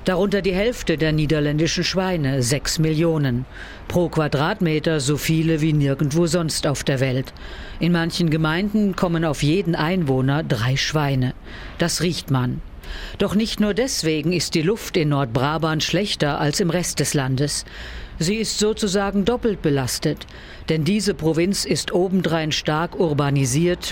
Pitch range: 145-180 Hz